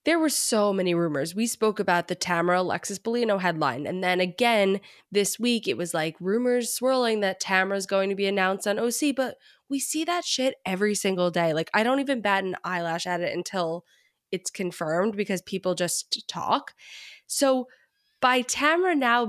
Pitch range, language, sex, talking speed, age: 180-235 Hz, English, female, 185 wpm, 20-39